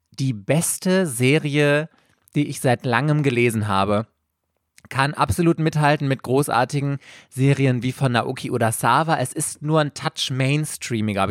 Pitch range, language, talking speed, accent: 125-155 Hz, German, 145 wpm, German